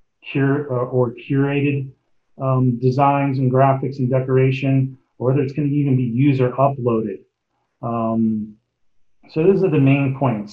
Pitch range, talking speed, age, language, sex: 120-140 Hz, 135 wpm, 40-59, English, male